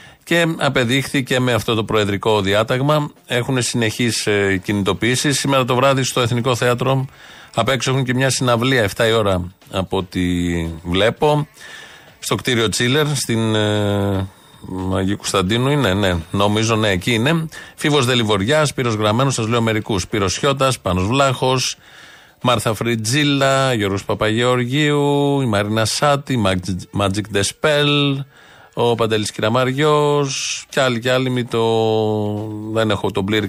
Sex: male